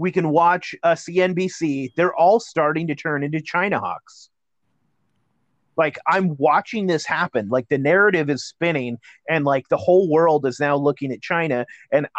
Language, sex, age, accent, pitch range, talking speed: English, male, 30-49, American, 150-180 Hz, 170 wpm